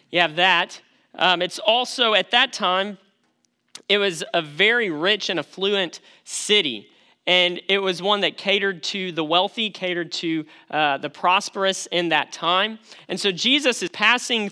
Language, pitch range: English, 170-215 Hz